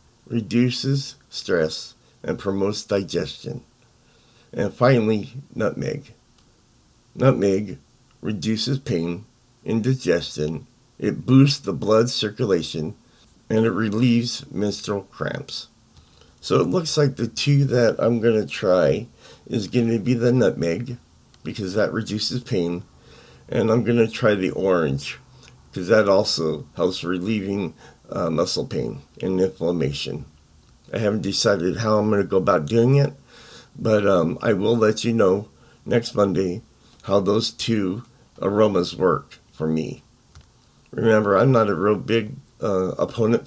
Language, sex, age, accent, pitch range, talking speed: English, male, 50-69, American, 95-120 Hz, 130 wpm